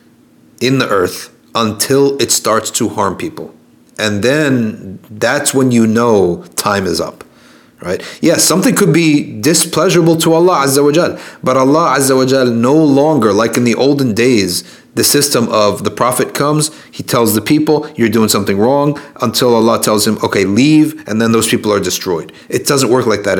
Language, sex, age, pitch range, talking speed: English, male, 30-49, 110-145 Hz, 180 wpm